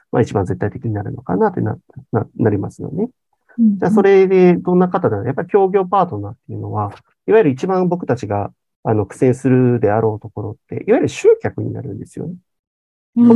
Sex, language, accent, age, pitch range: male, Japanese, native, 40-59, 105-140 Hz